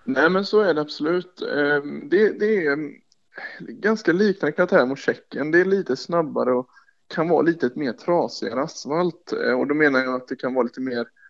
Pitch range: 125-150 Hz